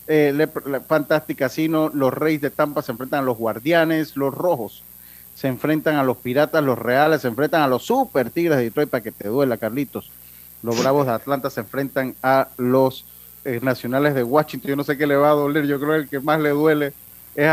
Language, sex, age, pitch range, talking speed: Spanish, male, 40-59, 120-150 Hz, 215 wpm